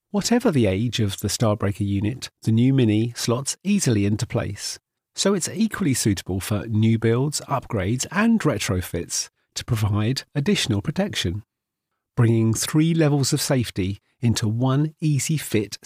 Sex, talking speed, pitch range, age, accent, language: male, 135 wpm, 105-145 Hz, 40-59, British, English